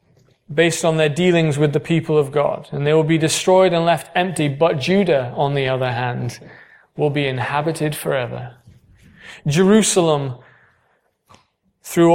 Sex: male